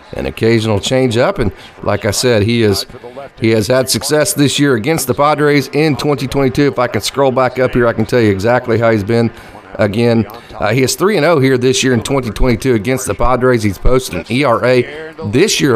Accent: American